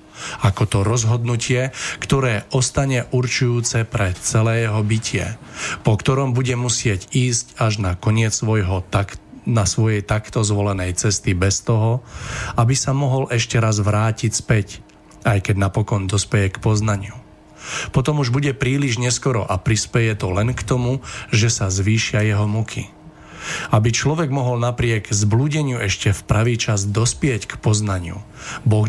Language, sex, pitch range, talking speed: Slovak, male, 105-120 Hz, 145 wpm